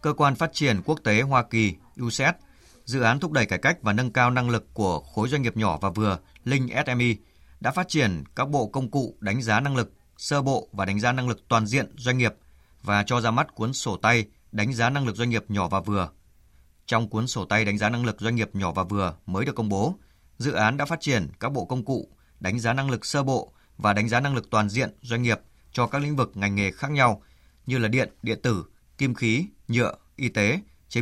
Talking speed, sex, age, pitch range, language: 245 wpm, male, 20-39, 100-130 Hz, Vietnamese